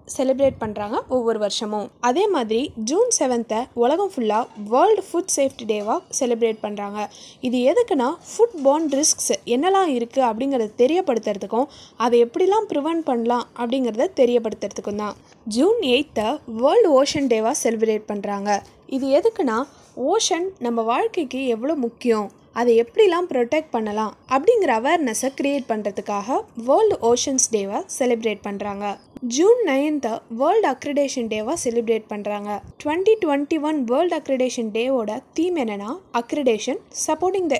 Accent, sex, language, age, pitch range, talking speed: native, female, Tamil, 20-39, 225-315 Hz, 105 wpm